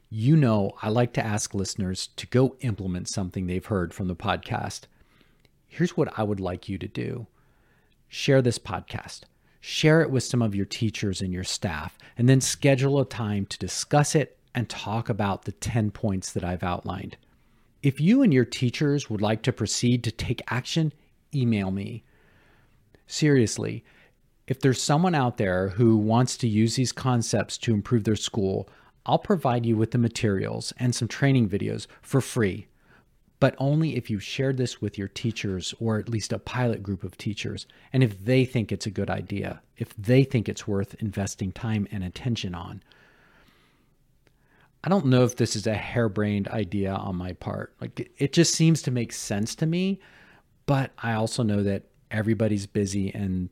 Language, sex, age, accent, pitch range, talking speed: English, male, 40-59, American, 100-130 Hz, 180 wpm